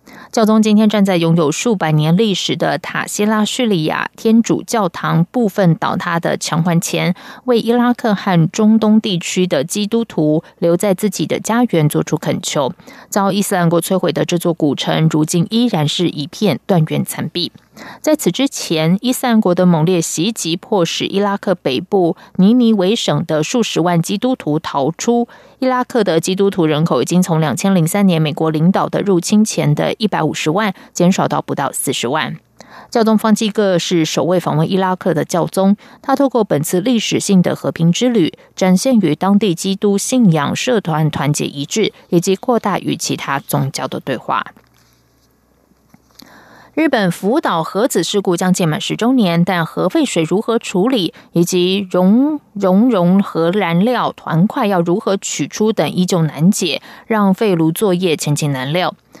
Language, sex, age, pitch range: English, female, 20-39, 170-220 Hz